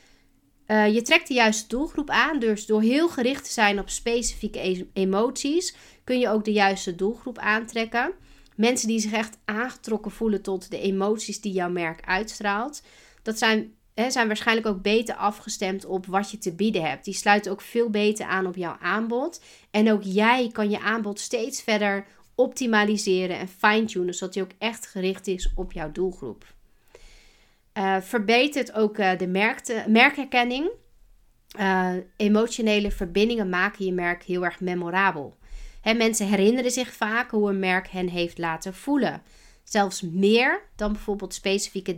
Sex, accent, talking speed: female, Dutch, 155 wpm